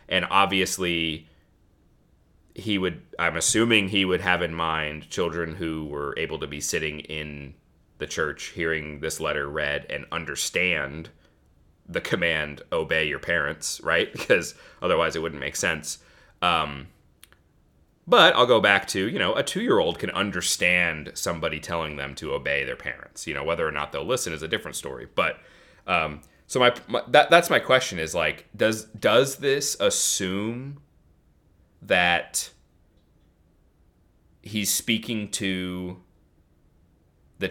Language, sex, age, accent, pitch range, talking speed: English, male, 30-49, American, 80-105 Hz, 145 wpm